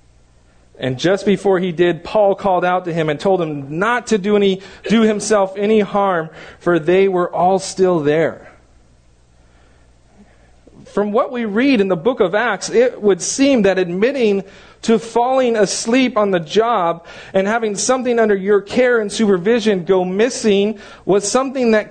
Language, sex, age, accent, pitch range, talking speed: English, male, 40-59, American, 130-205 Hz, 165 wpm